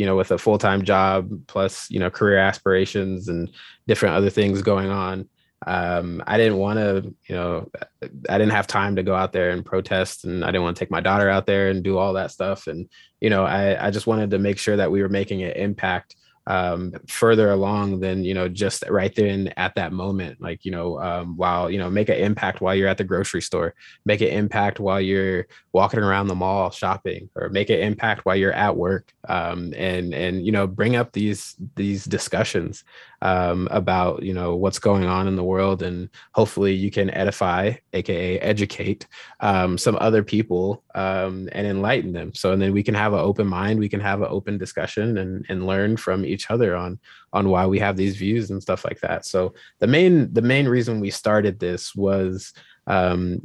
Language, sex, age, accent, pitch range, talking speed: English, male, 20-39, American, 95-105 Hz, 210 wpm